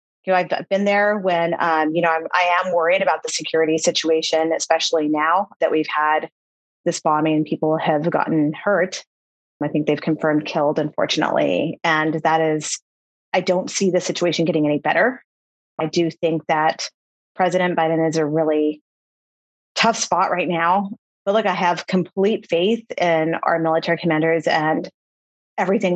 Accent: American